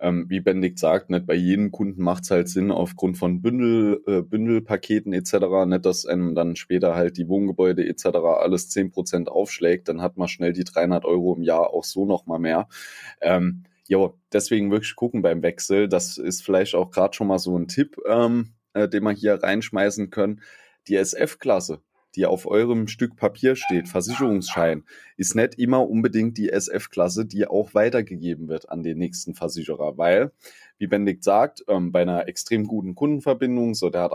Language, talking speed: German, 175 wpm